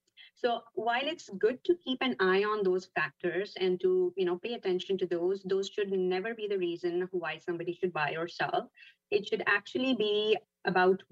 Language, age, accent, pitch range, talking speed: English, 30-49, Indian, 175-235 Hz, 185 wpm